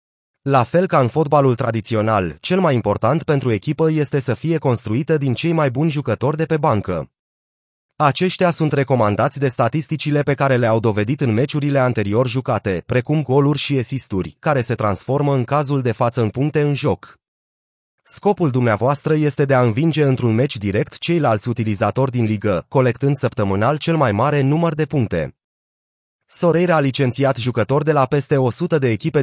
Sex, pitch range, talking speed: male, 115-155 Hz, 170 wpm